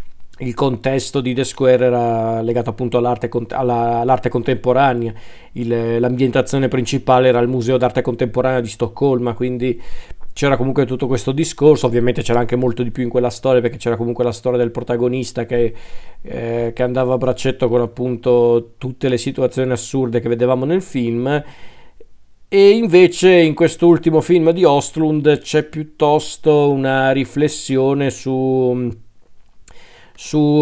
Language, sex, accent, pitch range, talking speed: Italian, male, native, 125-155 Hz, 140 wpm